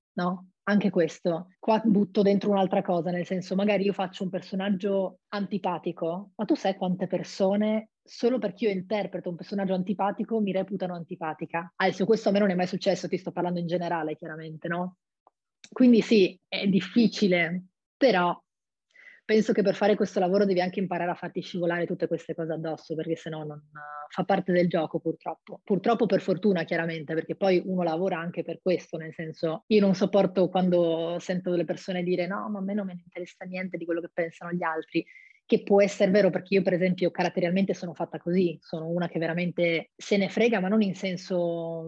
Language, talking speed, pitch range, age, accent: Italian, 195 wpm, 170-200 Hz, 20-39, native